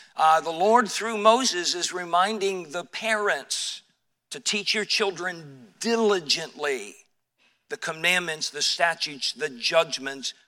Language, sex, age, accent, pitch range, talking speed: English, male, 50-69, American, 160-210 Hz, 115 wpm